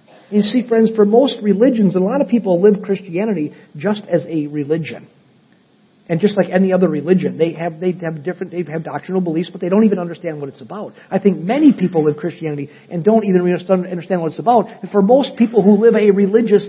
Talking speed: 220 wpm